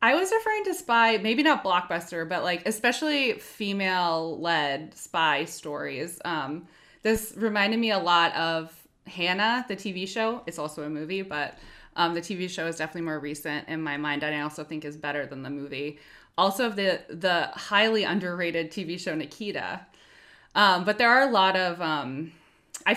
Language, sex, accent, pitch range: English, female, American, 155-210 Hz